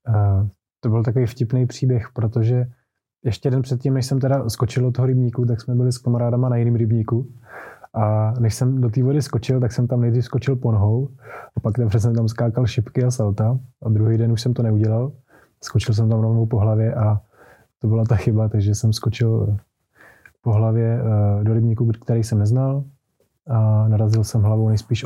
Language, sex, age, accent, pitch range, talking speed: Czech, male, 20-39, native, 110-120 Hz, 195 wpm